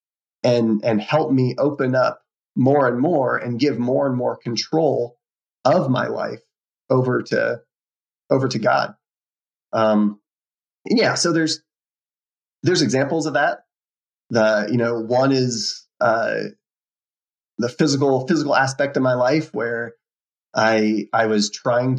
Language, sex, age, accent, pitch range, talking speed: English, male, 30-49, American, 110-130 Hz, 135 wpm